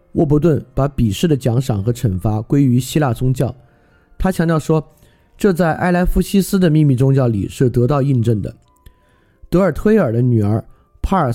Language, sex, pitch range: Chinese, male, 115-155 Hz